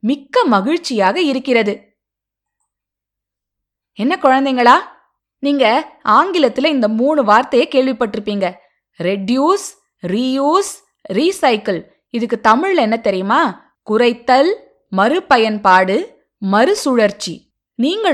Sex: female